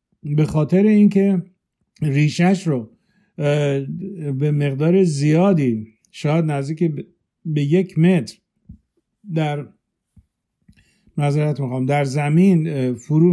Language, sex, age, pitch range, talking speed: Persian, male, 50-69, 135-170 Hz, 85 wpm